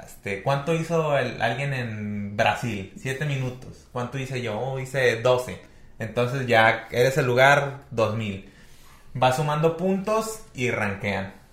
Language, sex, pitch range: Spanish, male, 110-150 Hz